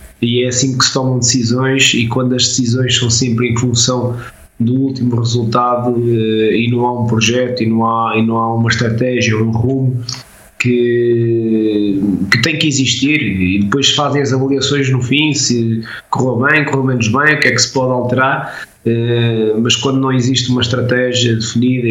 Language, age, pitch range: Portuguese, 20-39, 115-135 Hz